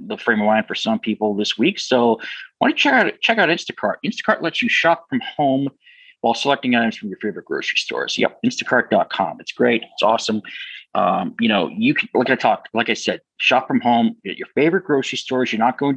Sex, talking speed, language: male, 220 wpm, English